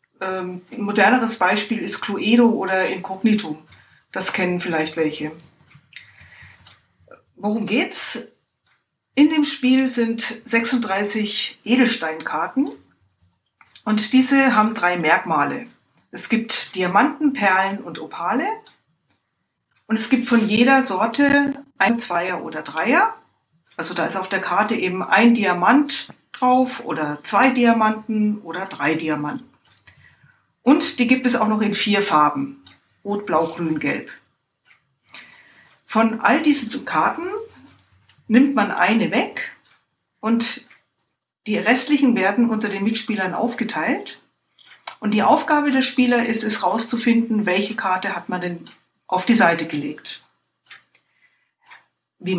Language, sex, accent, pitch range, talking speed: German, female, German, 185-245 Hz, 120 wpm